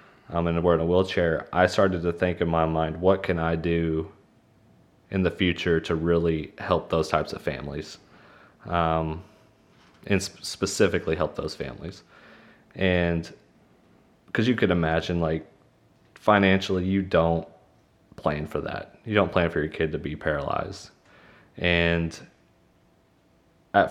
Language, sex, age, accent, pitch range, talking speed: English, male, 30-49, American, 80-95 Hz, 145 wpm